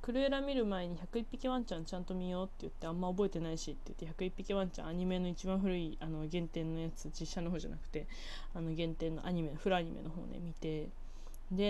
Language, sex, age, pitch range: Japanese, female, 20-39, 175-235 Hz